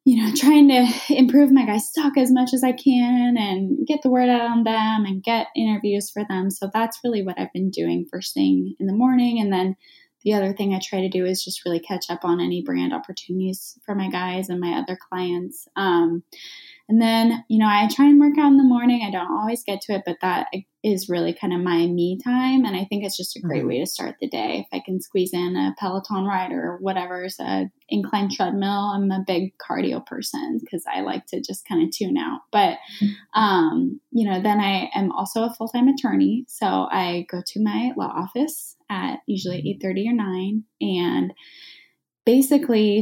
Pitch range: 185-245 Hz